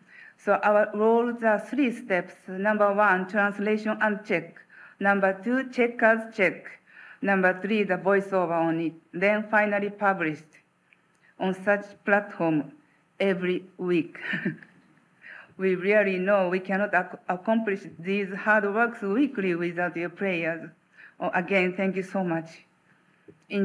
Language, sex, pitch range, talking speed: English, female, 190-220 Hz, 125 wpm